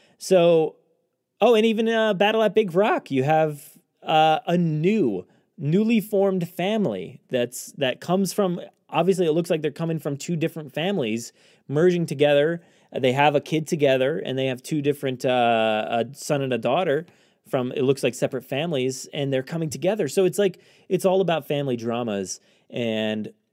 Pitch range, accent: 120-170 Hz, American